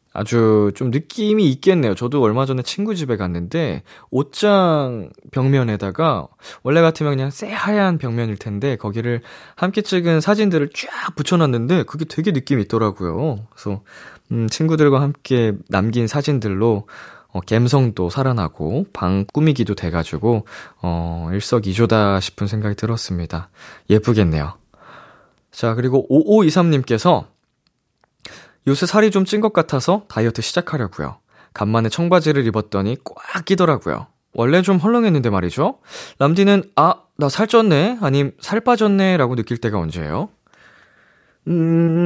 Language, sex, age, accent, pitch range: Korean, male, 20-39, native, 105-165 Hz